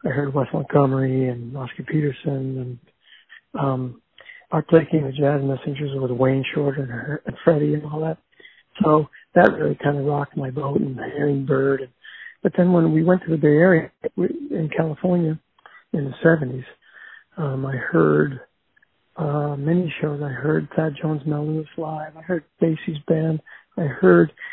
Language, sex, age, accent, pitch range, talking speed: English, male, 60-79, American, 140-165 Hz, 165 wpm